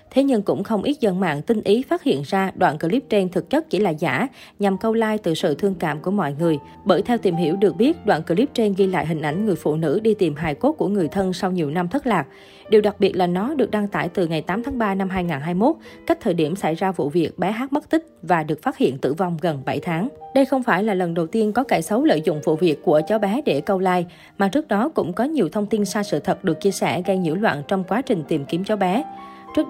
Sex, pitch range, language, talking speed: female, 175-225 Hz, Vietnamese, 280 wpm